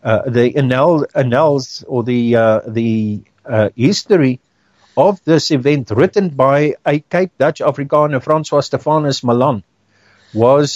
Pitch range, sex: 125-170 Hz, male